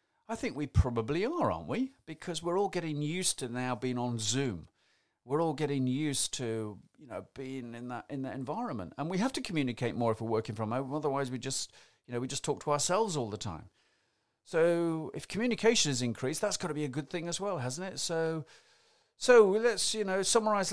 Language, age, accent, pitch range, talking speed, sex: English, 40-59, British, 120-175 Hz, 220 wpm, male